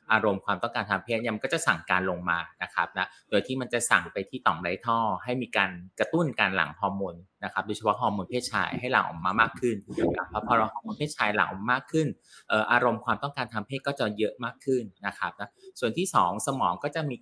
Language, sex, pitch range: Thai, male, 100-125 Hz